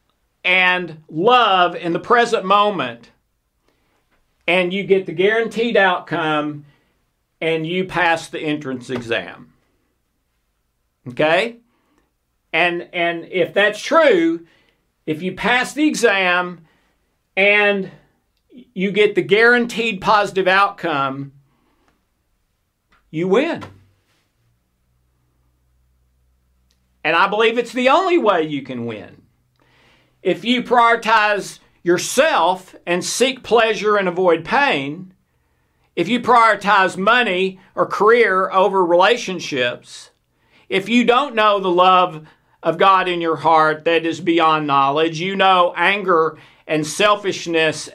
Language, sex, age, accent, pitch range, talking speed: English, male, 50-69, American, 150-200 Hz, 110 wpm